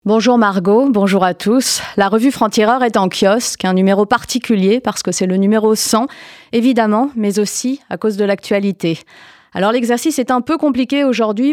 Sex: female